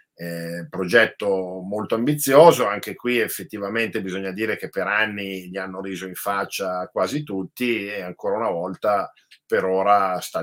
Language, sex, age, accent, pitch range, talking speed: Italian, male, 50-69, native, 95-115 Hz, 150 wpm